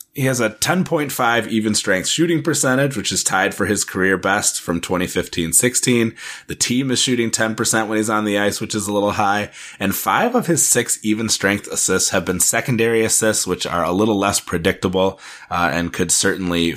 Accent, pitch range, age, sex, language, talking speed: American, 100-130 Hz, 30-49, male, English, 195 wpm